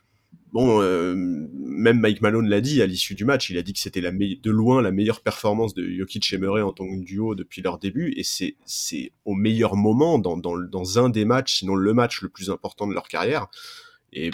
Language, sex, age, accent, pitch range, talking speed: French, male, 30-49, French, 95-115 Hz, 235 wpm